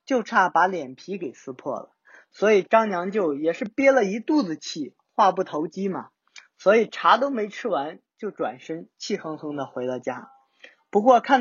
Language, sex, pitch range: Chinese, male, 175-250 Hz